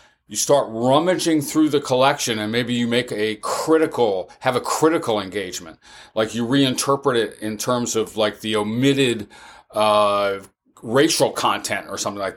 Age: 40-59